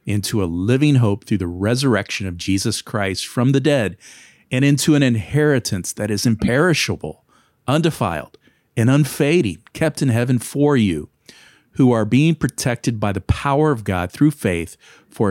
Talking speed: 155 wpm